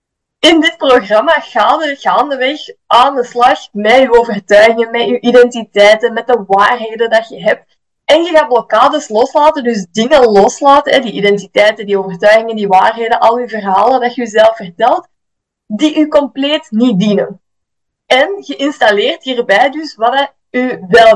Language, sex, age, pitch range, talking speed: Dutch, female, 20-39, 225-280 Hz, 160 wpm